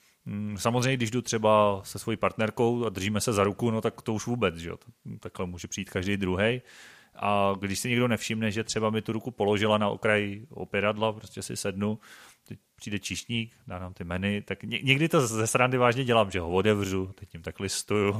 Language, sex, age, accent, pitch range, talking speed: Czech, male, 30-49, native, 100-120 Hz, 200 wpm